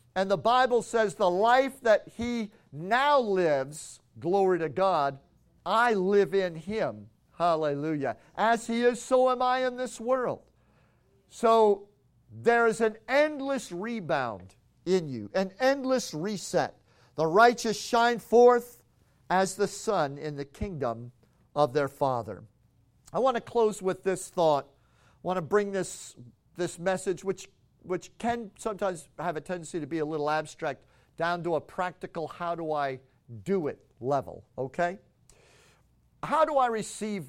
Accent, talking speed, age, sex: American, 140 wpm, 50-69, male